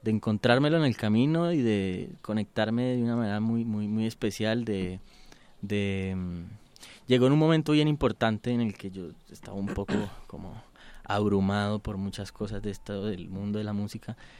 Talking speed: 175 wpm